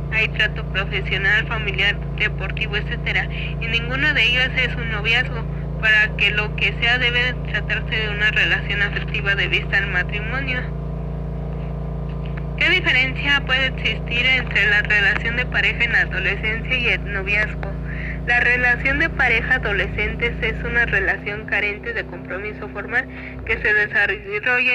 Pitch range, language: 155-240 Hz, Spanish